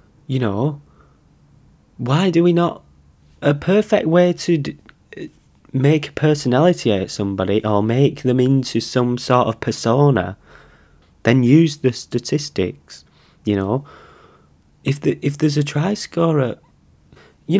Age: 20-39